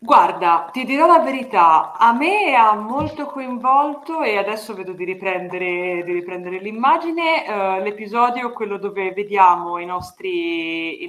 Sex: female